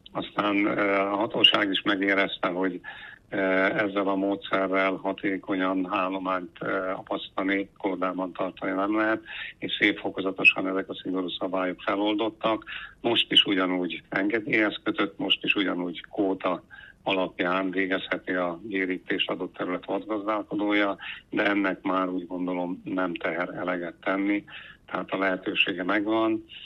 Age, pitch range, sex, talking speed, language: 70-89, 95-100 Hz, male, 115 wpm, Hungarian